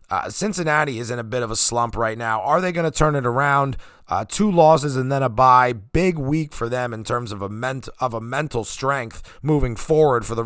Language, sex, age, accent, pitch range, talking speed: English, male, 30-49, American, 115-150 Hz, 240 wpm